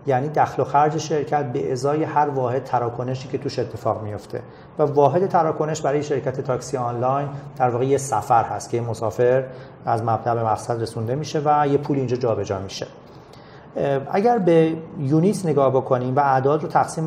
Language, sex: Arabic, male